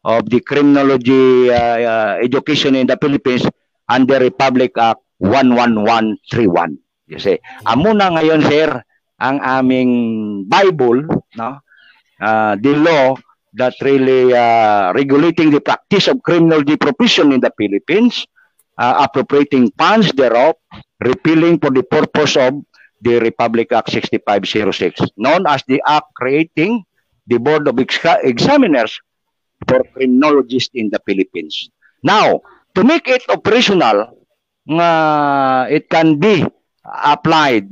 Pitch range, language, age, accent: 125-165 Hz, Filipino, 50-69, native